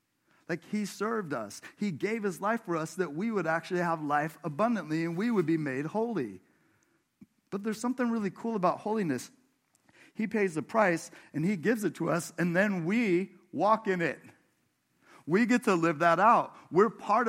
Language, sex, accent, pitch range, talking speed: English, male, American, 150-210 Hz, 185 wpm